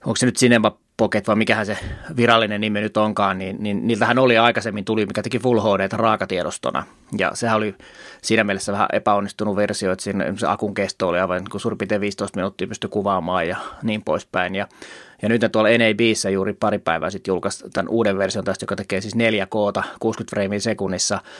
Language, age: Finnish, 30-49